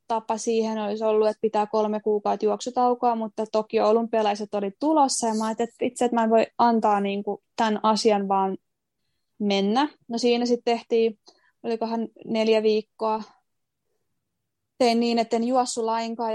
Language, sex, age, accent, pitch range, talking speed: Finnish, female, 20-39, native, 215-240 Hz, 150 wpm